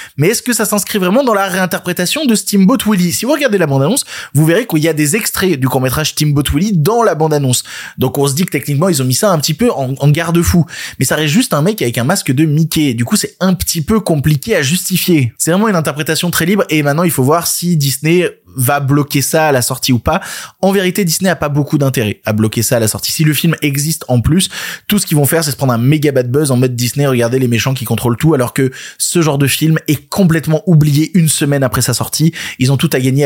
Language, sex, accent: French, male, French